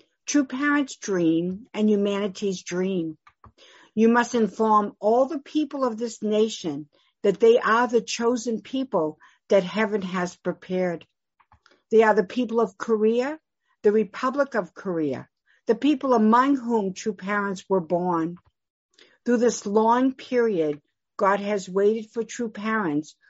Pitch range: 185-240 Hz